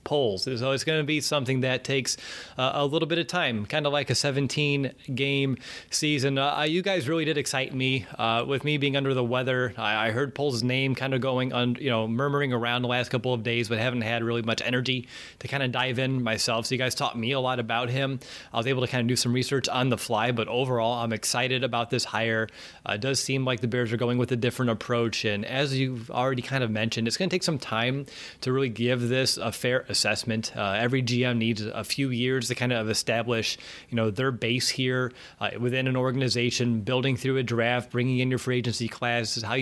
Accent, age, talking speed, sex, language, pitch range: American, 30-49, 240 wpm, male, English, 120-135 Hz